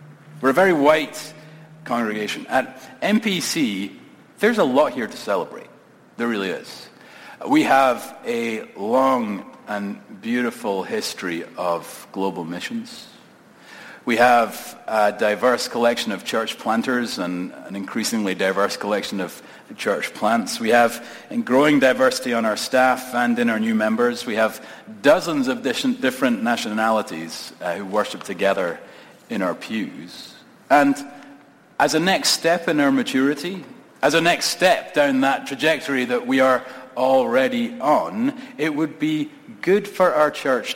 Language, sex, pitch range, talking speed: English, male, 120-170 Hz, 135 wpm